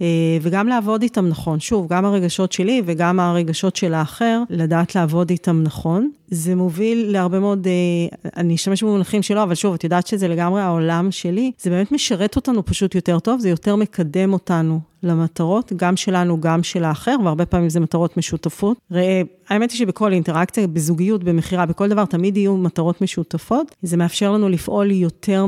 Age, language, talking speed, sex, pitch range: 40-59, Hebrew, 170 wpm, female, 170-195 Hz